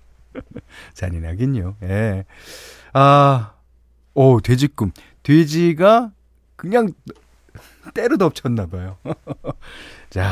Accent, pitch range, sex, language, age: native, 95-150 Hz, male, Korean, 40-59